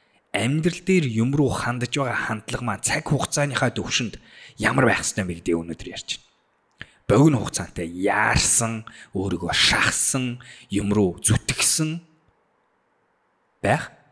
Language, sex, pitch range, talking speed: English, male, 100-145 Hz, 105 wpm